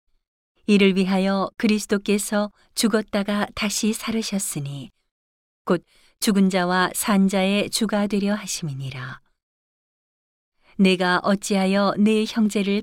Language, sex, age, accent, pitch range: Korean, female, 40-59, native, 180-205 Hz